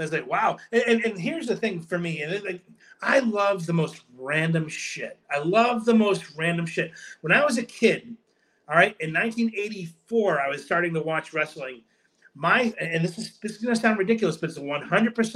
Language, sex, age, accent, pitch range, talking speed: English, male, 30-49, American, 165-225 Hz, 210 wpm